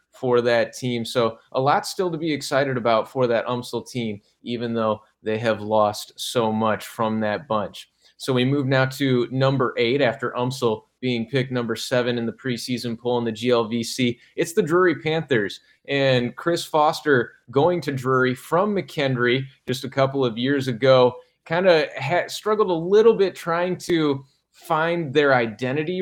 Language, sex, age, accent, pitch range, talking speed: English, male, 20-39, American, 120-140 Hz, 170 wpm